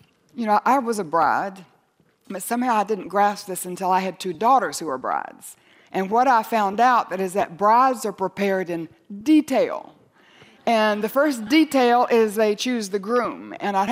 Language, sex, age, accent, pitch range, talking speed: English, female, 60-79, American, 185-230 Hz, 190 wpm